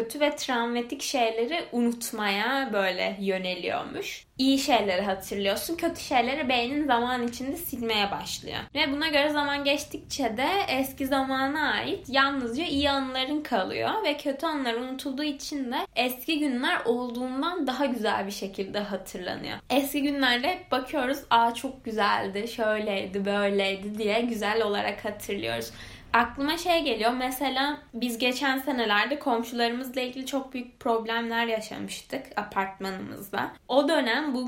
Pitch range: 215-275 Hz